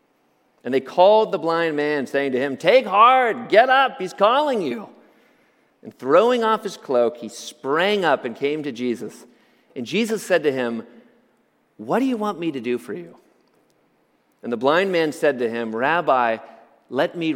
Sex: male